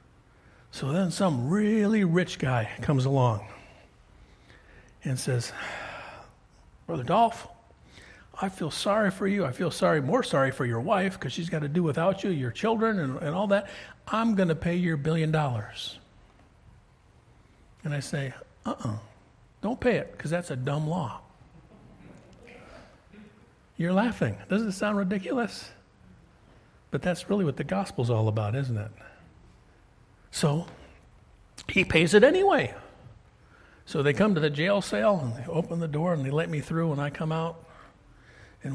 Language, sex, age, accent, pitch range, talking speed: English, male, 60-79, American, 125-180 Hz, 155 wpm